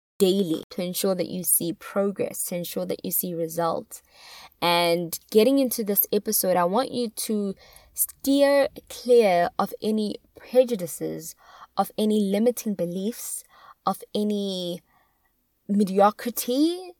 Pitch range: 180-235 Hz